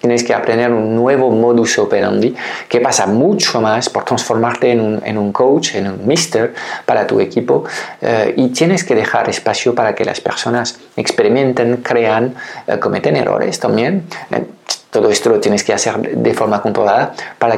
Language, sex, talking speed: Spanish, male, 175 wpm